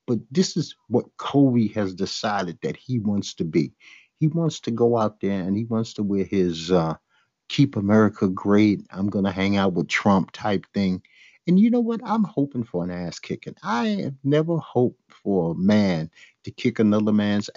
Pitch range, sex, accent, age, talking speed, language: 100-135 Hz, male, American, 50-69, 200 wpm, English